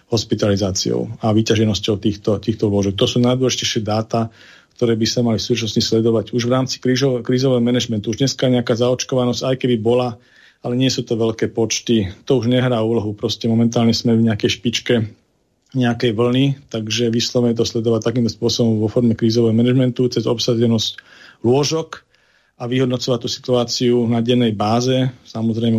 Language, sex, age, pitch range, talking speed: Slovak, male, 40-59, 115-125 Hz, 155 wpm